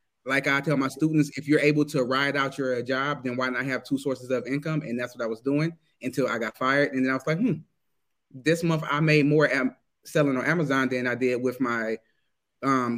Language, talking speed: English, 235 wpm